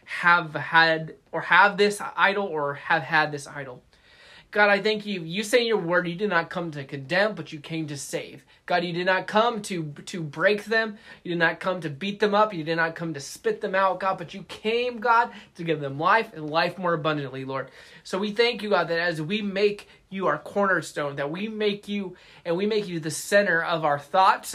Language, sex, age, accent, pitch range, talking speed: English, male, 20-39, American, 155-205 Hz, 230 wpm